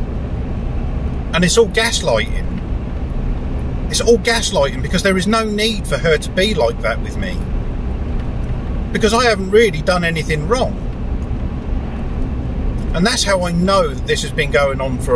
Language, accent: English, British